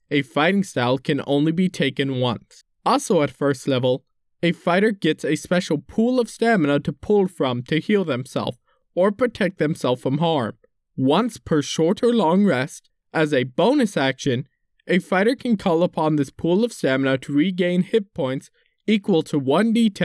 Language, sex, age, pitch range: English, male, 20-39, 140-195 Hz